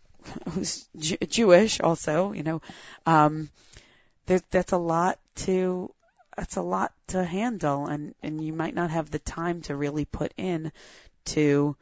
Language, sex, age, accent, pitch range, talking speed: English, female, 30-49, American, 150-205 Hz, 150 wpm